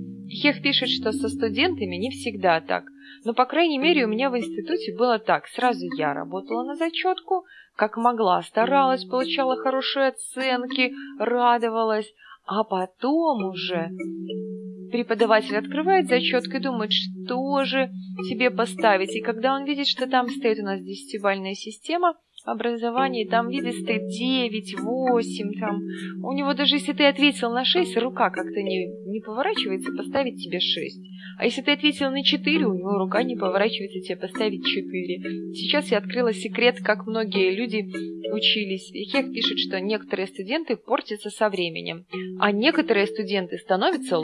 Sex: female